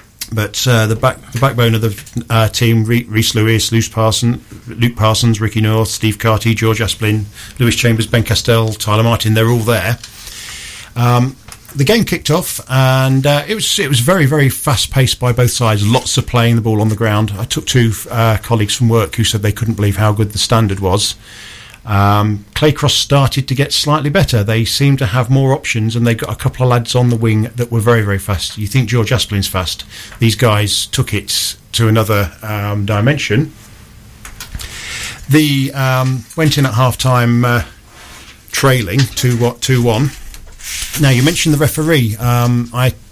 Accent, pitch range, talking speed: British, 110-130 Hz, 185 wpm